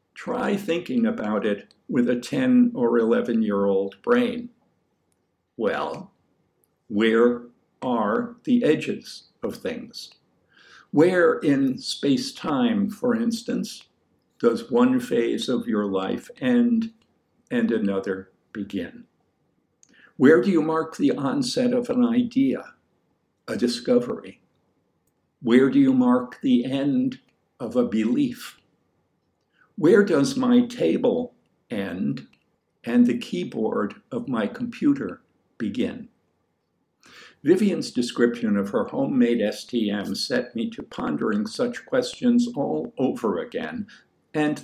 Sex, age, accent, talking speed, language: male, 60-79, American, 110 wpm, English